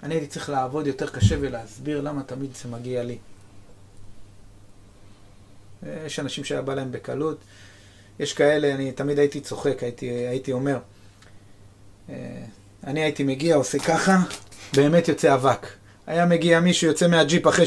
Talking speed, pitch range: 140 wpm, 100-145 Hz